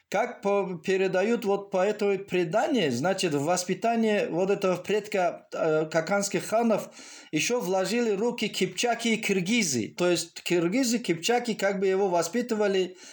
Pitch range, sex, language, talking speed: 175-220 Hz, male, Russian, 135 wpm